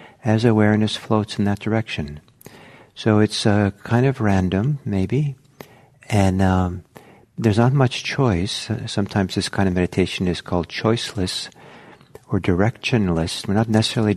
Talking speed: 135 wpm